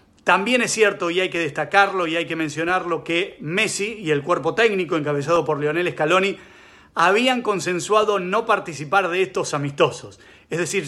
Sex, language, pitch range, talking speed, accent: male, English, 165-200 Hz, 165 wpm, Argentinian